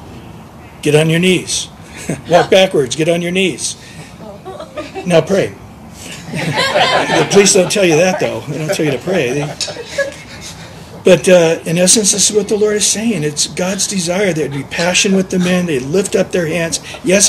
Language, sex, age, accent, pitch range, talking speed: English, male, 50-69, American, 155-215 Hz, 185 wpm